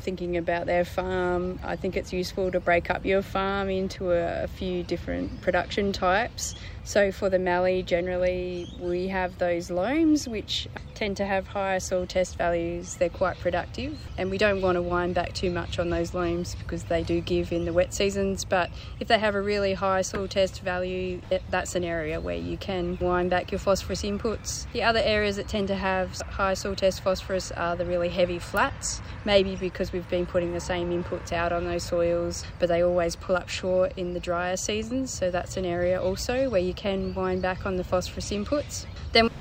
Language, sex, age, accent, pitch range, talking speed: English, female, 20-39, Australian, 175-195 Hz, 205 wpm